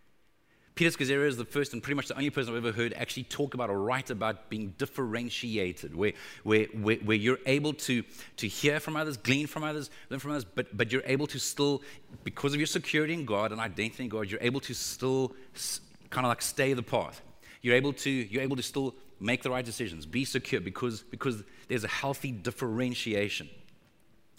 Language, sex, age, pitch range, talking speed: English, male, 30-49, 125-160 Hz, 195 wpm